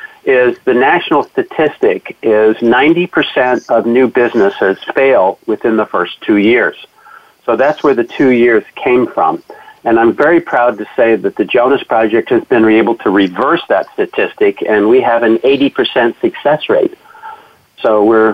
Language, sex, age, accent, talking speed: English, male, 50-69, American, 160 wpm